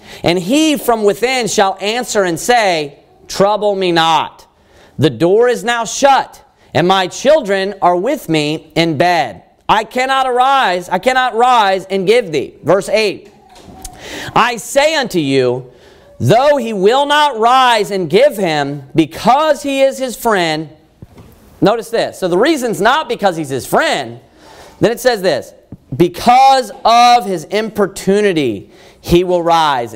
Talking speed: 145 wpm